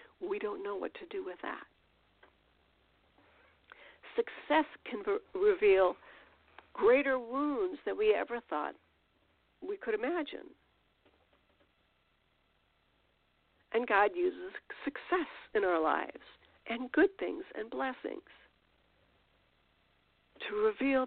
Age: 50-69